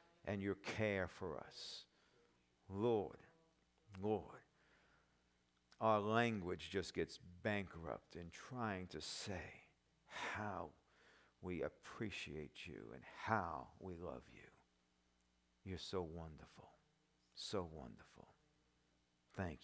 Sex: male